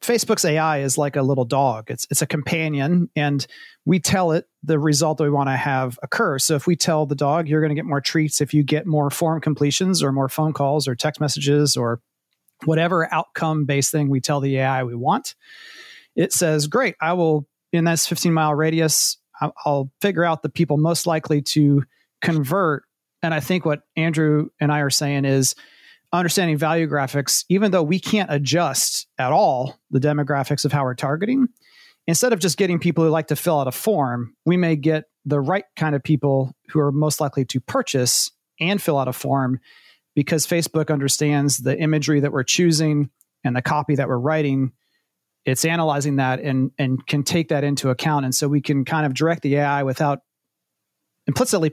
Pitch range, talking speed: 140-165 Hz, 195 wpm